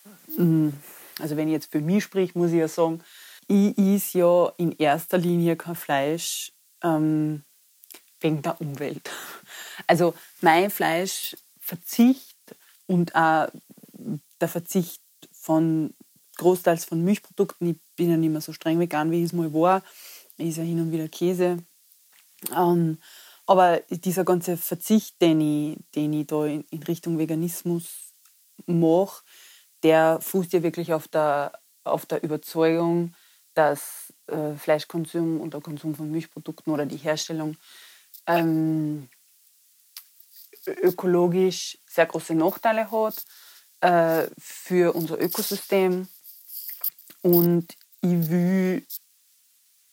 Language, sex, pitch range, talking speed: German, female, 160-180 Hz, 120 wpm